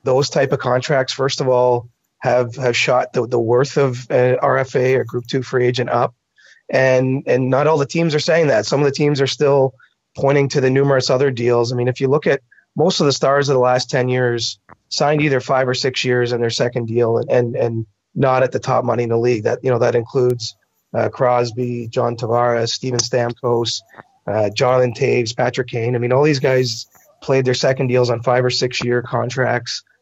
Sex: male